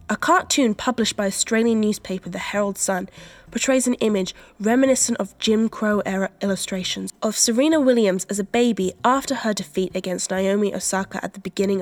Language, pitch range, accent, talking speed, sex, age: English, 190-235 Hz, British, 160 wpm, female, 10-29